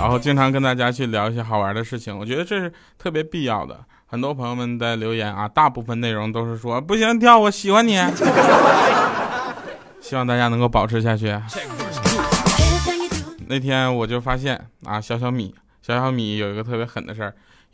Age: 20-39